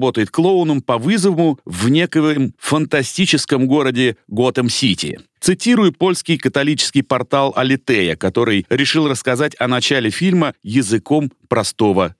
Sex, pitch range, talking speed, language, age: male, 115-165 Hz, 110 wpm, Russian, 40-59